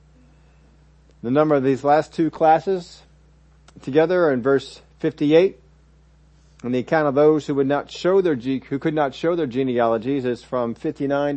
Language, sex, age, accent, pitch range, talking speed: English, male, 50-69, American, 115-150 Hz, 165 wpm